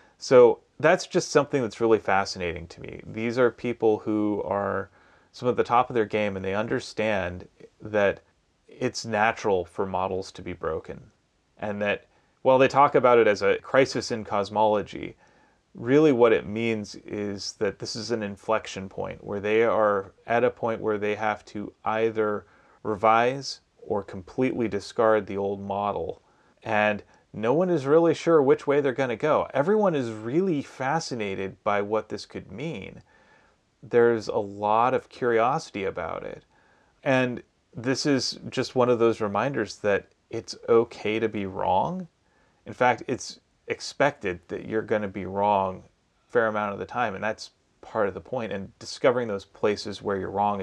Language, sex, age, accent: English, male, 30-49, American